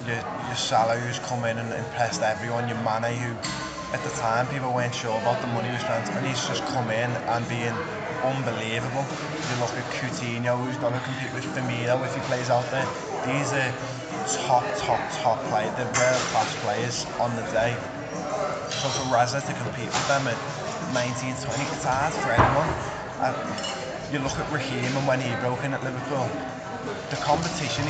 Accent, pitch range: British, 115-135 Hz